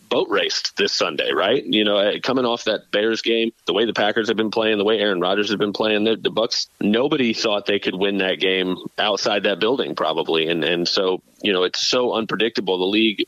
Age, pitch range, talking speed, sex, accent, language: 30-49, 105-145 Hz, 225 wpm, male, American, English